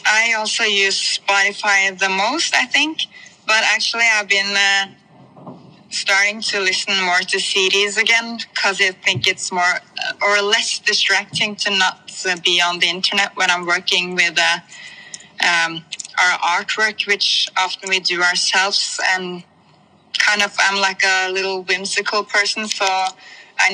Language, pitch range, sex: English, 185-210 Hz, female